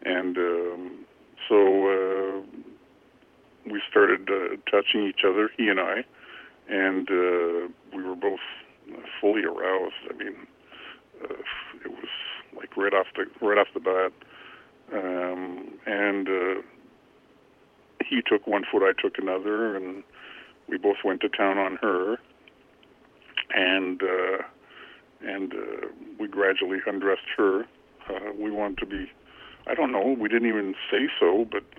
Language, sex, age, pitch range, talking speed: English, female, 50-69, 95-105 Hz, 140 wpm